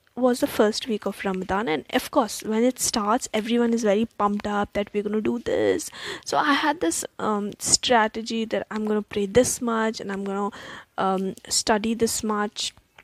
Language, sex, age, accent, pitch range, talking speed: Hindi, female, 10-29, native, 205-250 Hz, 200 wpm